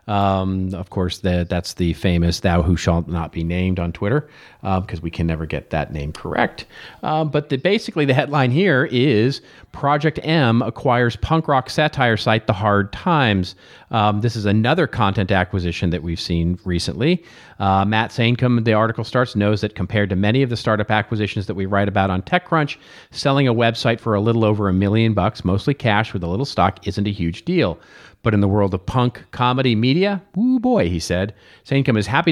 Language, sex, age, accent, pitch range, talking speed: English, male, 40-59, American, 95-125 Hz, 200 wpm